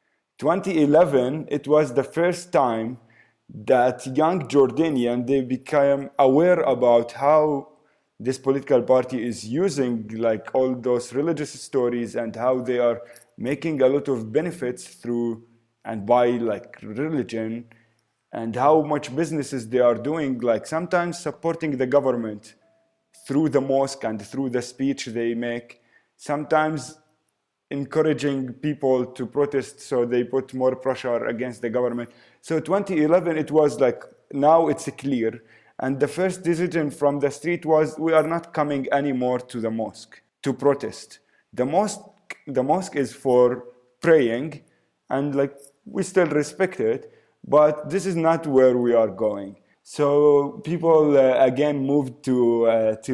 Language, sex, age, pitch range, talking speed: English, male, 30-49, 120-150 Hz, 145 wpm